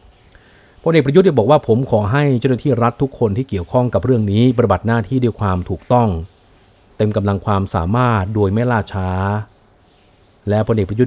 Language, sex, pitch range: Thai, male, 95-120 Hz